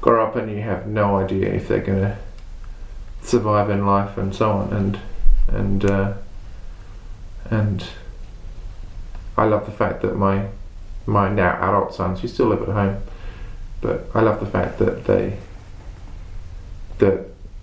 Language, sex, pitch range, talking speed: English, male, 95-100 Hz, 145 wpm